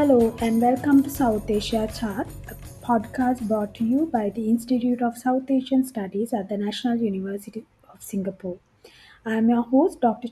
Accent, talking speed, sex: Indian, 175 wpm, female